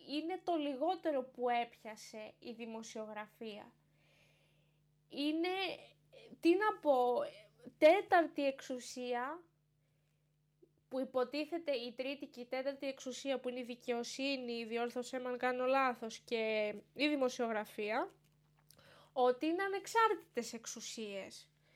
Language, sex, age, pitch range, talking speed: Greek, female, 20-39, 215-295 Hz, 95 wpm